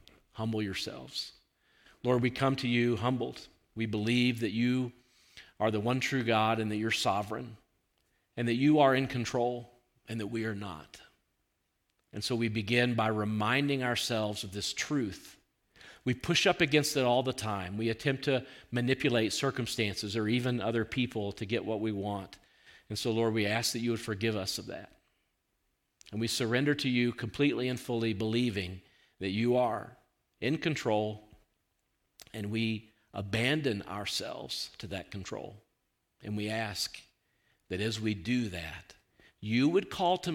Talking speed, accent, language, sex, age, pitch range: 160 wpm, American, English, male, 50-69, 105-125 Hz